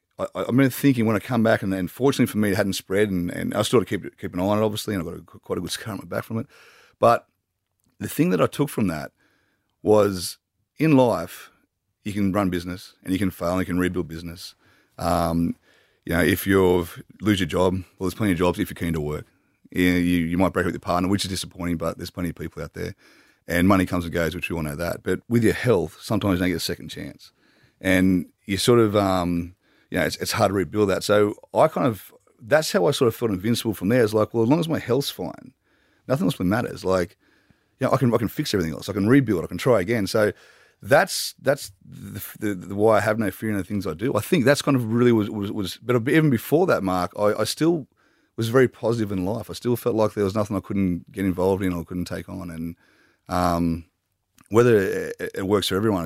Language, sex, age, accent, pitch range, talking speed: English, male, 30-49, Australian, 90-110 Hz, 265 wpm